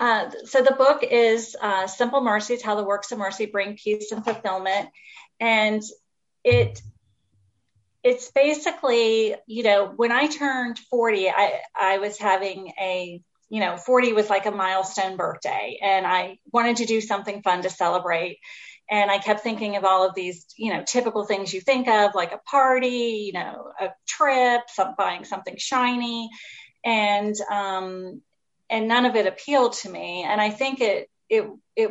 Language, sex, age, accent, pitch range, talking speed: English, female, 30-49, American, 190-235 Hz, 170 wpm